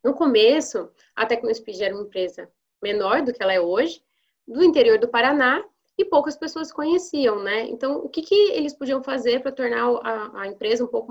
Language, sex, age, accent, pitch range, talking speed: Portuguese, female, 20-39, Brazilian, 220-275 Hz, 195 wpm